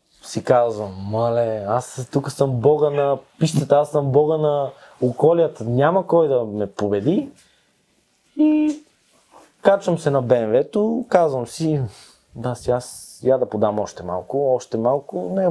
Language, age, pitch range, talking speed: Bulgarian, 20-39, 115-155 Hz, 145 wpm